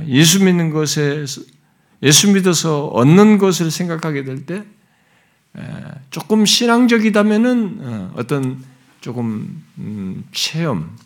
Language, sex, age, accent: Korean, male, 50-69, native